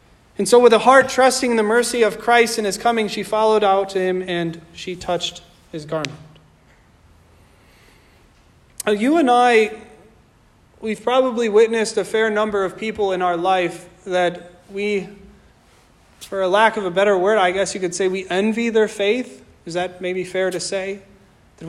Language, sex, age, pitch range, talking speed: English, male, 30-49, 180-220 Hz, 170 wpm